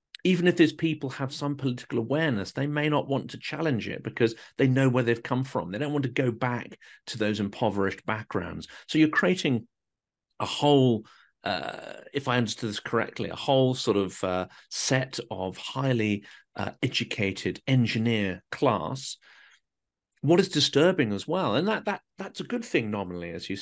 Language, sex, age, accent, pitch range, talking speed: English, male, 40-59, British, 100-135 Hz, 180 wpm